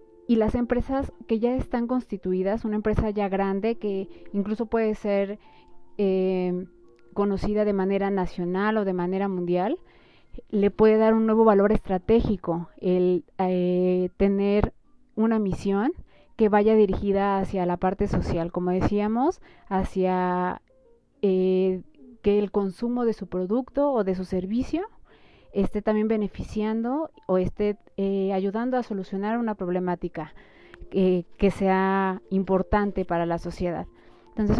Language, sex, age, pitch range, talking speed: Spanish, female, 30-49, 185-220 Hz, 130 wpm